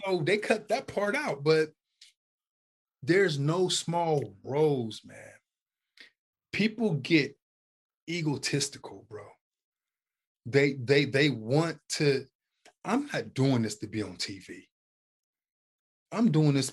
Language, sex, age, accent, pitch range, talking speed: English, male, 20-39, American, 115-155 Hz, 115 wpm